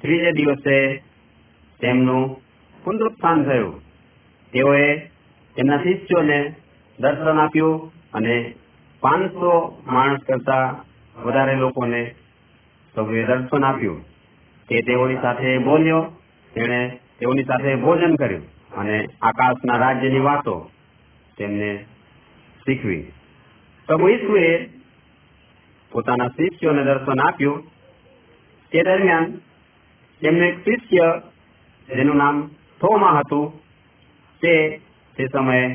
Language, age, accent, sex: Hindi, 50-69, native, male